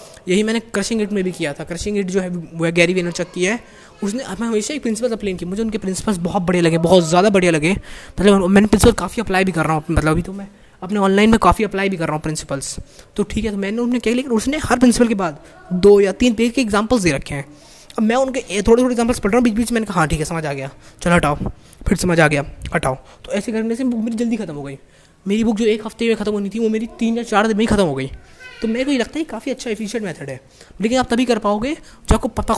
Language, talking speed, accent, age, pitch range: Hindi, 285 wpm, native, 20-39, 175-230 Hz